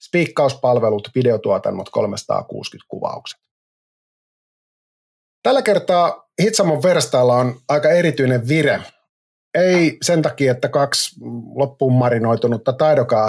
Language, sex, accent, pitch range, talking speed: Finnish, male, native, 115-155 Hz, 90 wpm